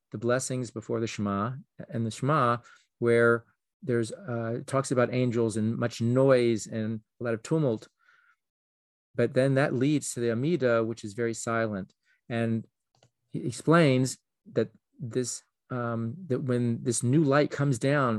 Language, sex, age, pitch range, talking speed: English, male, 40-59, 115-130 Hz, 150 wpm